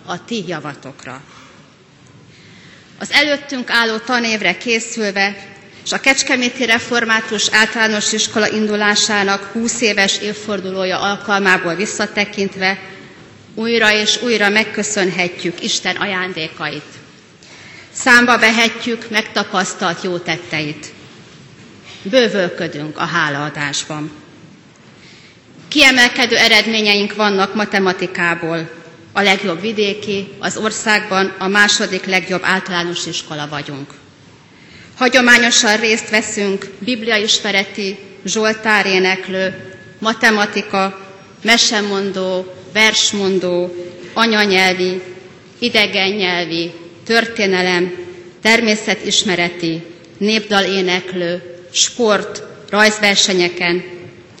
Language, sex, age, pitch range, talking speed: Hungarian, female, 30-49, 180-215 Hz, 75 wpm